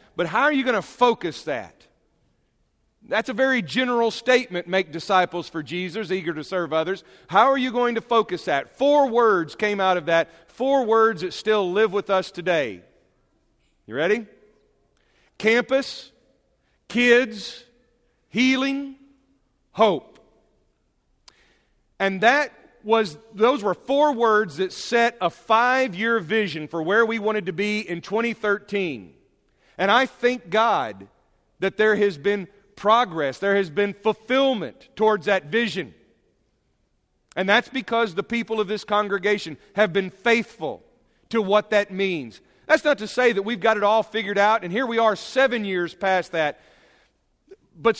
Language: English